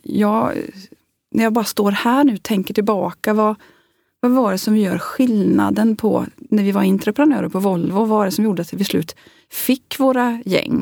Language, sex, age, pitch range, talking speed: Swedish, female, 30-49, 195-235 Hz, 195 wpm